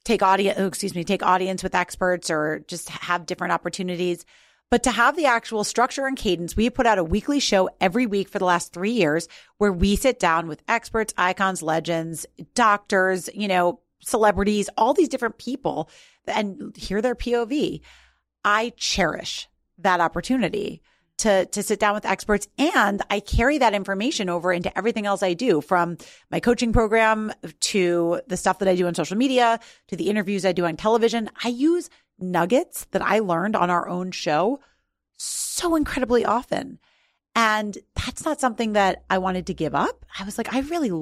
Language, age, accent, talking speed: English, 30-49, American, 180 wpm